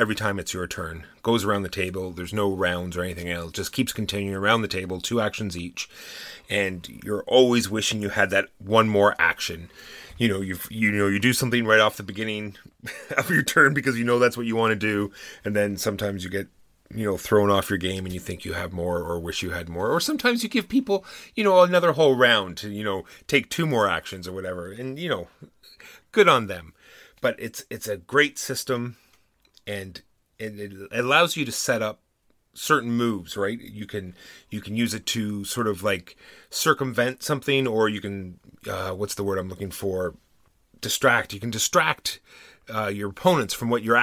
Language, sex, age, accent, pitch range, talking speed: English, male, 30-49, American, 95-115 Hz, 210 wpm